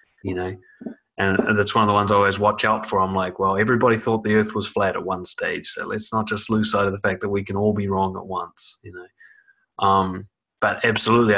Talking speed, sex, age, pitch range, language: 250 wpm, male, 20-39, 100-120 Hz, English